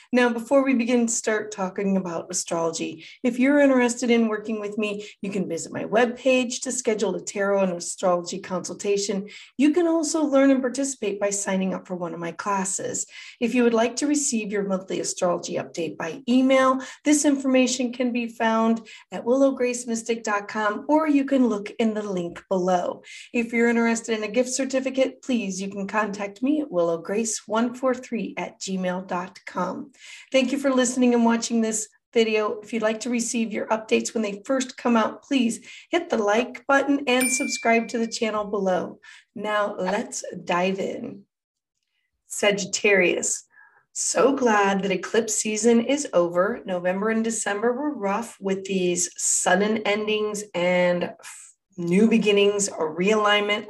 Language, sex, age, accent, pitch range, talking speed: English, female, 30-49, American, 195-255 Hz, 160 wpm